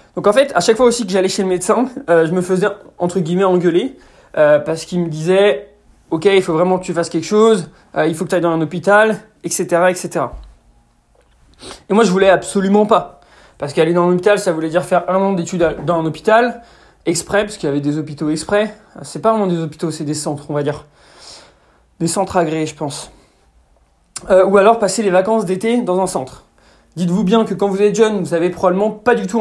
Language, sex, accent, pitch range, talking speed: French, male, French, 160-205 Hz, 230 wpm